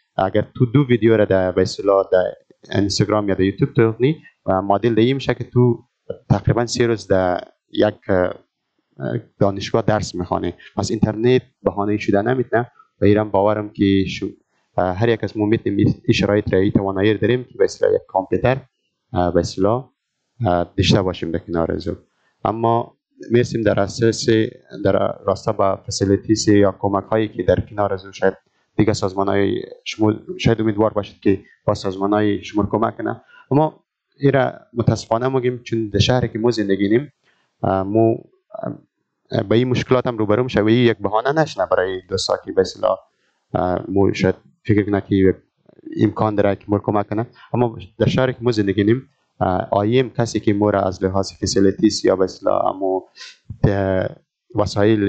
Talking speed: 150 wpm